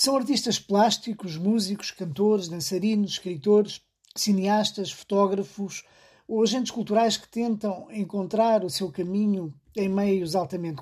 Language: Portuguese